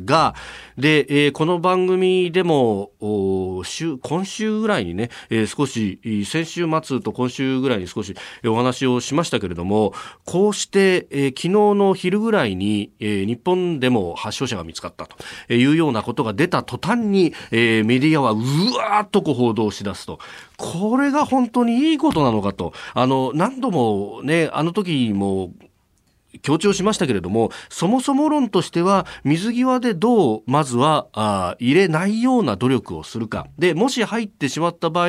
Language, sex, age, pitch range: Japanese, male, 40-59, 120-195 Hz